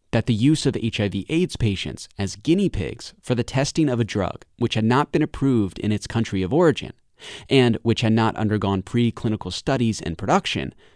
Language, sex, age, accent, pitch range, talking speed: English, male, 30-49, American, 105-140 Hz, 190 wpm